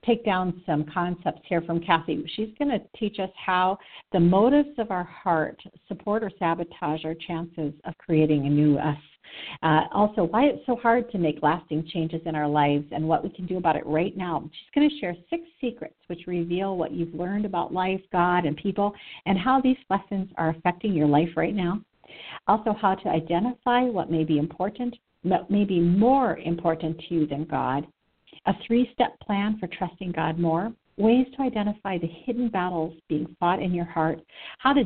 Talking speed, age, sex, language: 195 wpm, 50-69, female, English